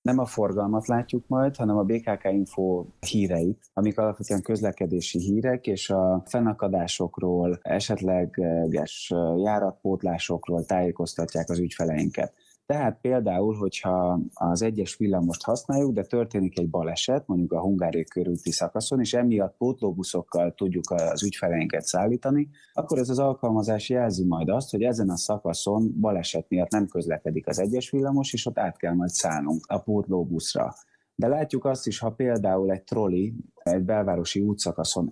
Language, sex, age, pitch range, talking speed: Hungarian, male, 30-49, 90-110 Hz, 140 wpm